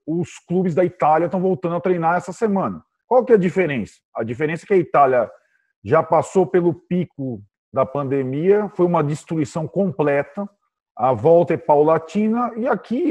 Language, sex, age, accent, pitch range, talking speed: Portuguese, male, 40-59, Brazilian, 140-205 Hz, 170 wpm